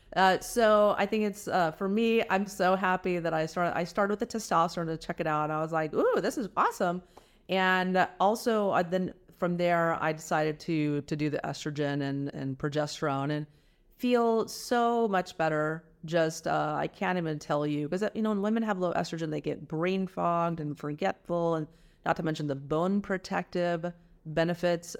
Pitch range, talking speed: 150-195 Hz, 195 wpm